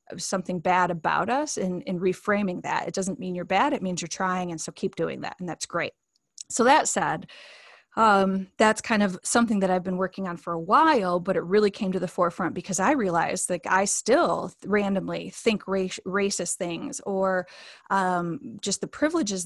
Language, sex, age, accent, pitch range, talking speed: English, female, 20-39, American, 175-195 Hz, 205 wpm